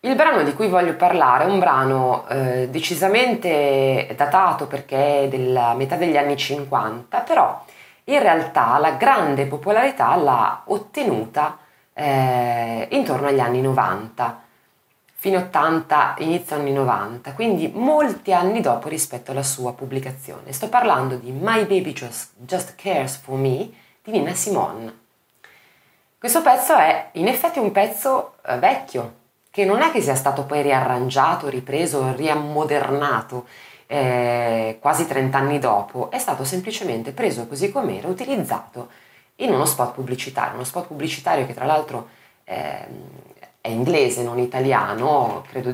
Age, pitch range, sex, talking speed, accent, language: 20-39, 125-180 Hz, female, 140 wpm, native, Italian